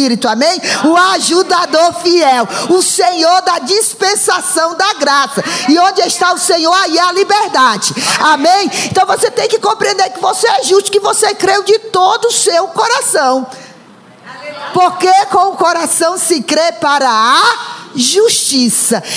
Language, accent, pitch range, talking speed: Portuguese, Brazilian, 265-380 Hz, 145 wpm